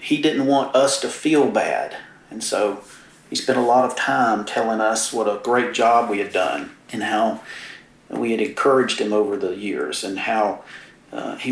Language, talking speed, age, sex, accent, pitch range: English, 195 wpm, 40-59, male, American, 110-125 Hz